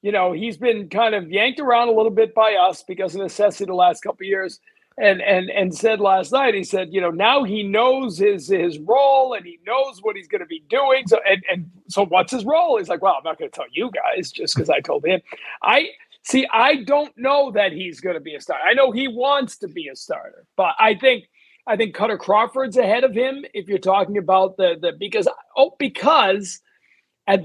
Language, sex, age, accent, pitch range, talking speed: English, male, 50-69, American, 185-255 Hz, 230 wpm